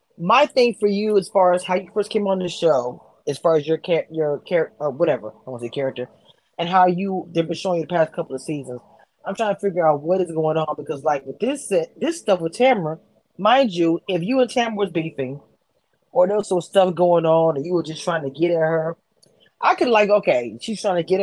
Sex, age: female, 20-39